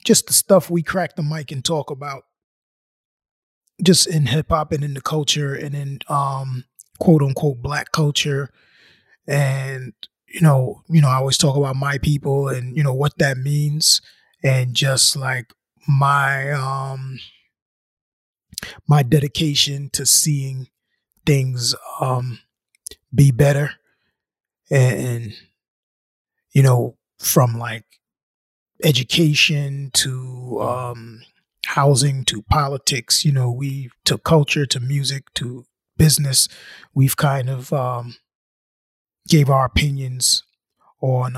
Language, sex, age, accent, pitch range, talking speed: English, male, 20-39, American, 125-145 Hz, 120 wpm